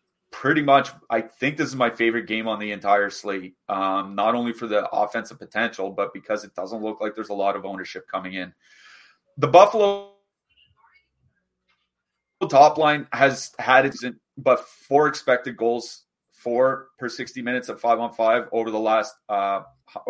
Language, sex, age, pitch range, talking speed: English, male, 30-49, 110-135 Hz, 170 wpm